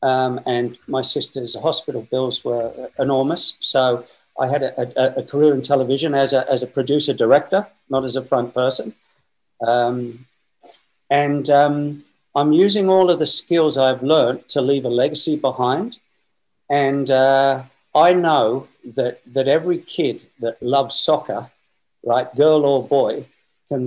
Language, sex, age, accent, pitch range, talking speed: English, male, 50-69, British, 125-155 Hz, 150 wpm